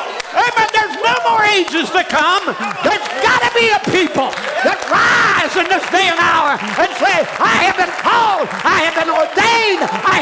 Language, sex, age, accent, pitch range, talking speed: English, male, 50-69, American, 335-425 Hz, 190 wpm